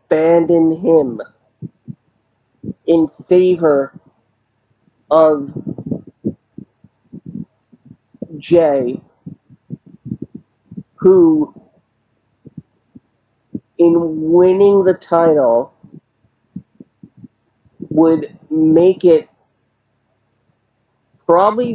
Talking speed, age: 40 wpm, 40-59